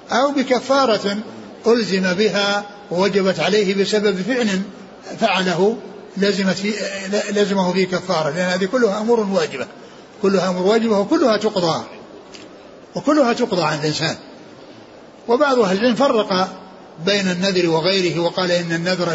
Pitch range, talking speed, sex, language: 180-220 Hz, 115 wpm, male, Arabic